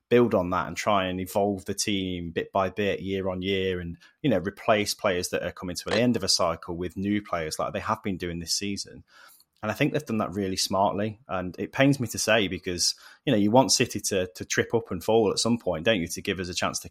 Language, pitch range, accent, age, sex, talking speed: English, 95-115 Hz, British, 20-39, male, 270 wpm